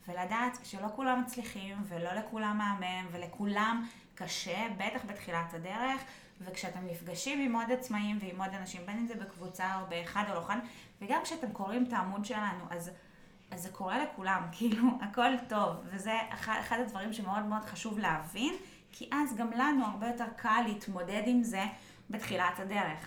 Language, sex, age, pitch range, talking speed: Hebrew, female, 20-39, 195-245 Hz, 165 wpm